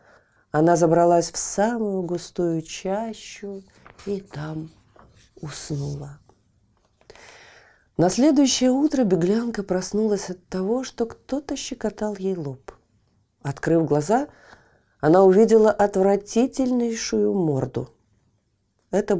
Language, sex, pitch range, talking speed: Russian, female, 145-220 Hz, 90 wpm